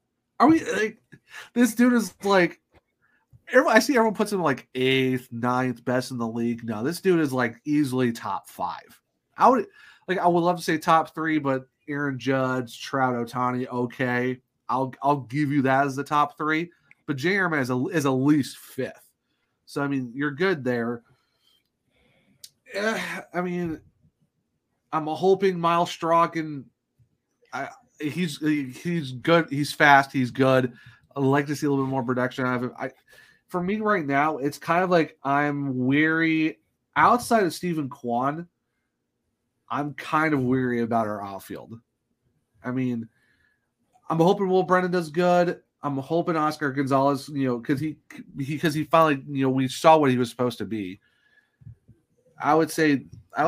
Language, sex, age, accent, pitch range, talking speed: English, male, 30-49, American, 125-165 Hz, 165 wpm